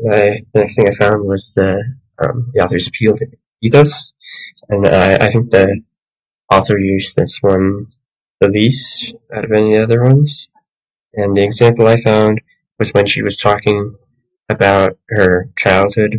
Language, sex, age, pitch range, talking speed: English, male, 20-39, 95-115 Hz, 160 wpm